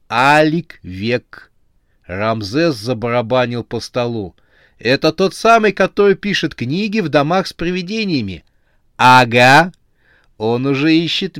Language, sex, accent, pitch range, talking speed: Russian, male, native, 110-165 Hz, 105 wpm